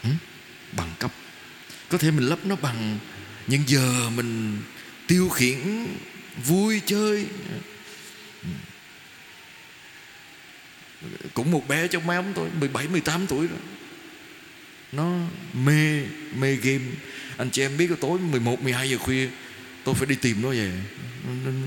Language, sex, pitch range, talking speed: Vietnamese, male, 130-180 Hz, 115 wpm